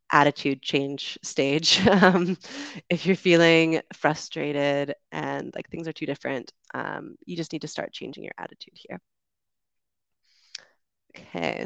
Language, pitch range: English, 145-175 Hz